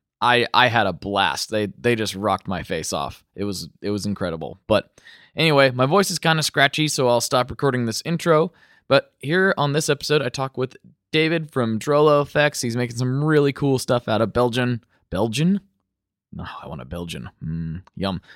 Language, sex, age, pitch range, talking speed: English, male, 20-39, 105-140 Hz, 205 wpm